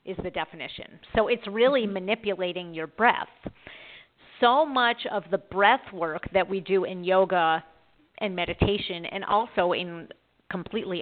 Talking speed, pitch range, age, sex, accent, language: 140 wpm, 175-210 Hz, 40-59, female, American, English